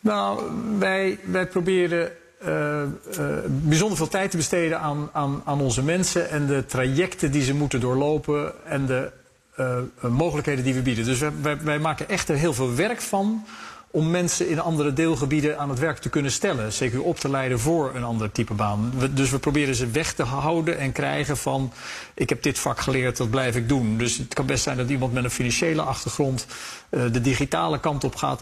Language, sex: Dutch, male